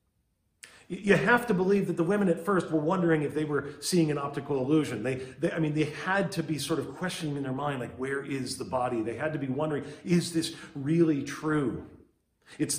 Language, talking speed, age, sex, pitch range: English, 220 wpm, 40-59, male, 145-175 Hz